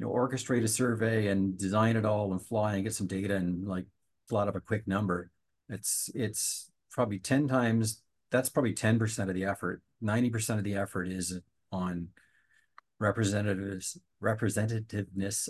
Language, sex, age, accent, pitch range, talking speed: English, male, 40-59, American, 100-115 Hz, 165 wpm